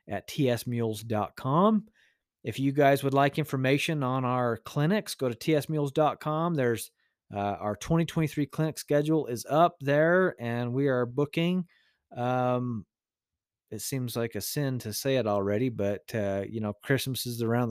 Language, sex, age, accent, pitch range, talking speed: English, male, 30-49, American, 115-145 Hz, 150 wpm